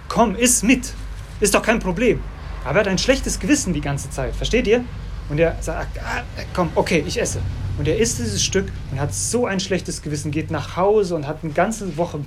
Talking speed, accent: 225 wpm, German